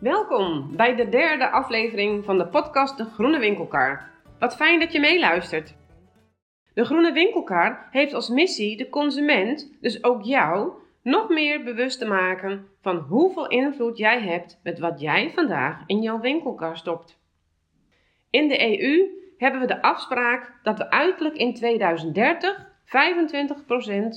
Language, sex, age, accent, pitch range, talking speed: Dutch, female, 30-49, Dutch, 170-270 Hz, 140 wpm